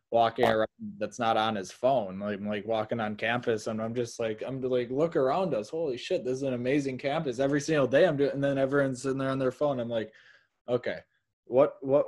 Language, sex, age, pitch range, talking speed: English, male, 20-39, 110-135 Hz, 230 wpm